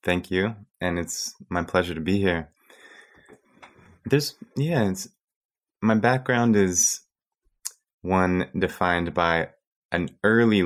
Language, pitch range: English, 80-95 Hz